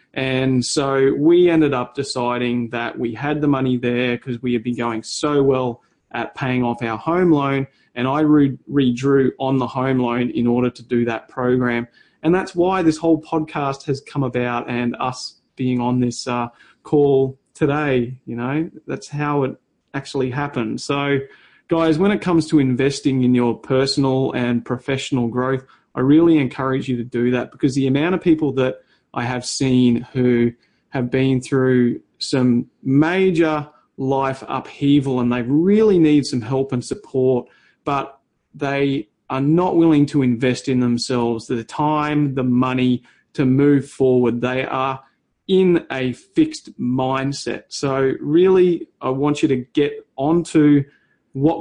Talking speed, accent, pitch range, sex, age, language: 160 wpm, Australian, 125-150 Hz, male, 30-49, English